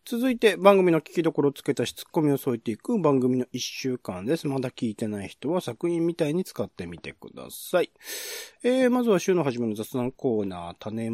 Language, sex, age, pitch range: Japanese, male, 40-59, 110-180 Hz